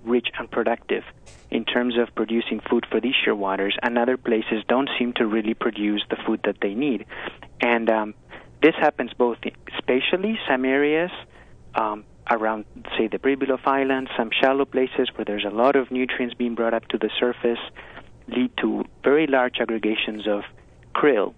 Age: 30-49